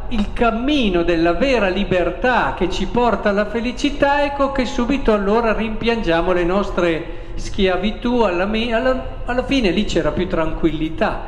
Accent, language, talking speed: native, Italian, 135 wpm